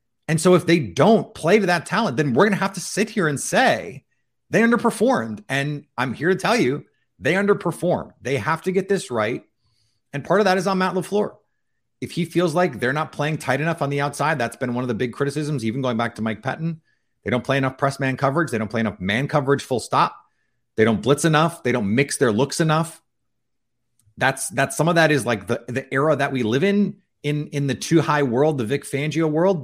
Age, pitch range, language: 30-49, 120-160 Hz, English